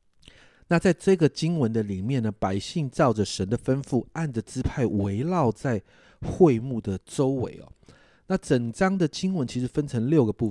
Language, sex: Chinese, male